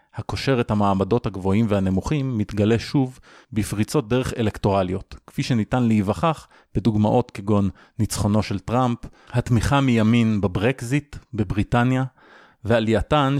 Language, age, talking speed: Hebrew, 30-49, 105 wpm